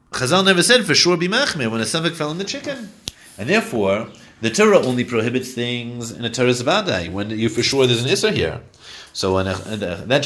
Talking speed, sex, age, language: 210 wpm, male, 30-49, English